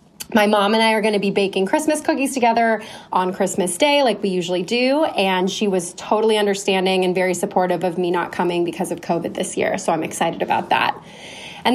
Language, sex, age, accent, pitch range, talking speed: English, female, 20-39, American, 180-215 Hz, 215 wpm